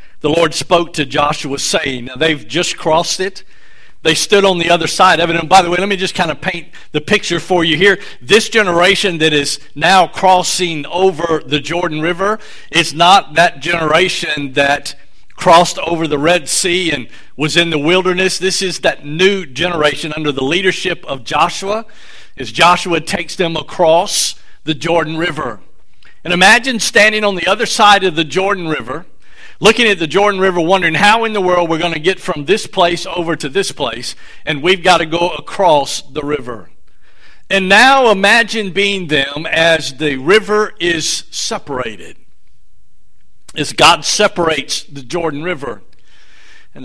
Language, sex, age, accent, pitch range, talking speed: English, male, 50-69, American, 155-195 Hz, 170 wpm